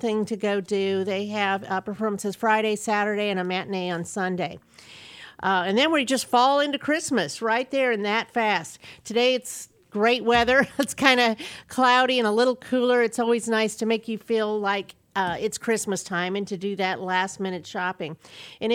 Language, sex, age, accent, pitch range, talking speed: English, female, 50-69, American, 200-245 Hz, 190 wpm